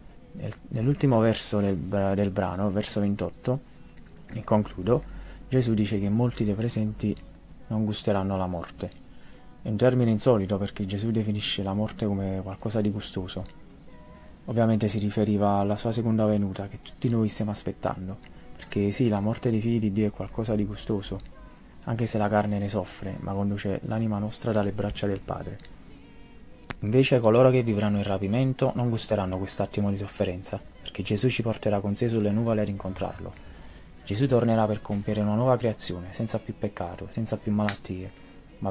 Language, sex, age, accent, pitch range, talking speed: Italian, male, 20-39, native, 100-115 Hz, 160 wpm